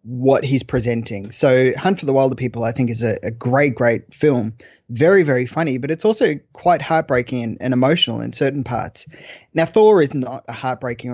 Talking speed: 200 wpm